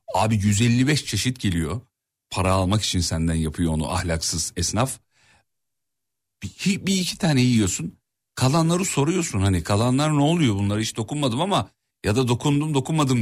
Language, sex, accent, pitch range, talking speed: Turkish, male, native, 95-145 Hz, 140 wpm